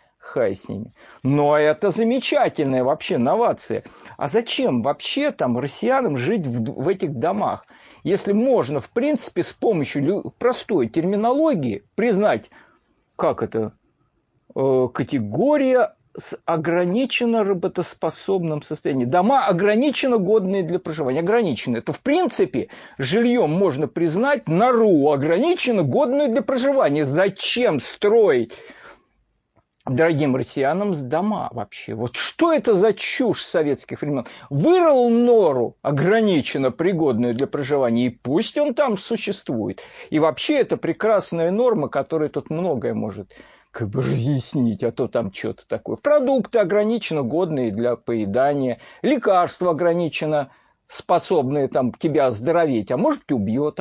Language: Russian